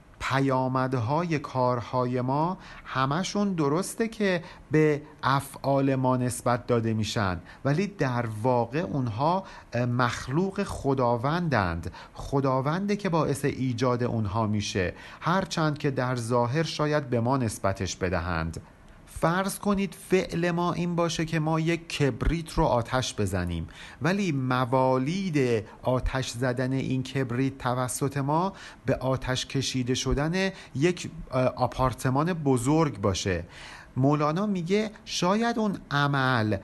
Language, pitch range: Persian, 125-165 Hz